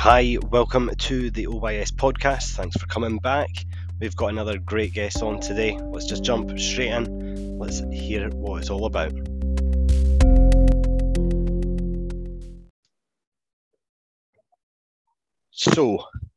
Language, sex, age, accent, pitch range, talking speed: English, male, 20-39, British, 95-110 Hz, 105 wpm